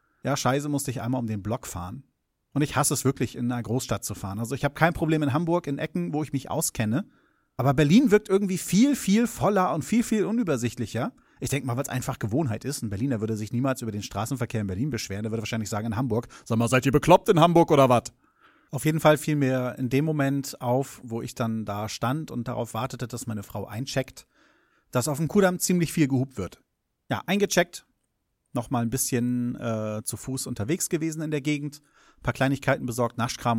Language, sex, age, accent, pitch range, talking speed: German, male, 30-49, German, 120-155 Hz, 225 wpm